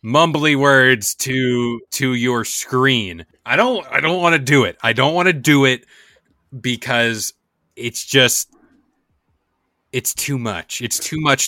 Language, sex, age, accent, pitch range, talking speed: English, male, 30-49, American, 110-145 Hz, 150 wpm